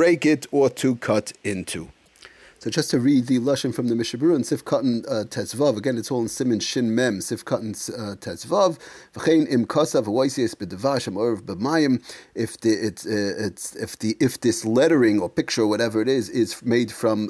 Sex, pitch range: male, 115-145 Hz